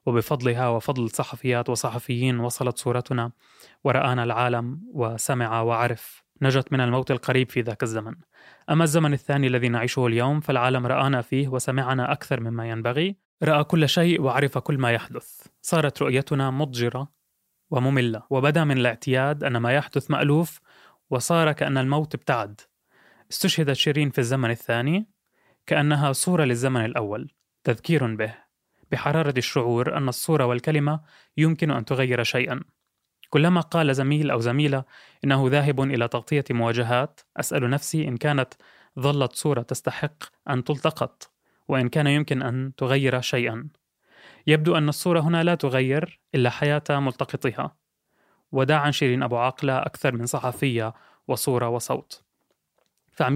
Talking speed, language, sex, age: 130 wpm, Arabic, male, 20-39